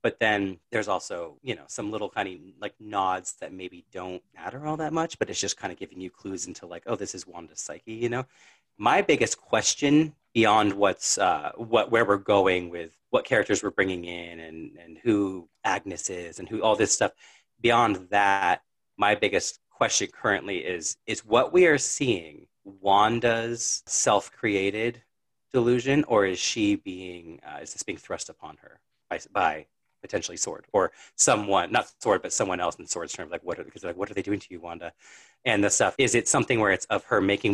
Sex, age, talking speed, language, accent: male, 30-49, 200 wpm, English, American